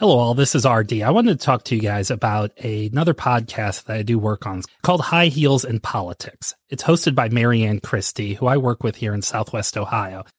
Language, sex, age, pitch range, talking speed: English, male, 30-49, 110-135 Hz, 230 wpm